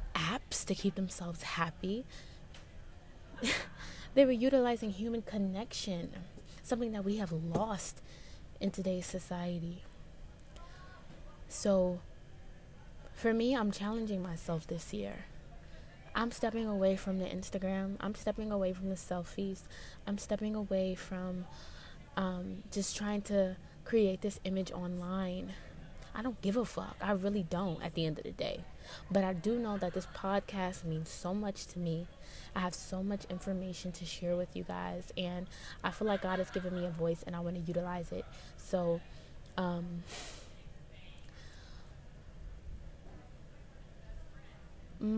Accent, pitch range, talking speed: American, 175-200 Hz, 140 wpm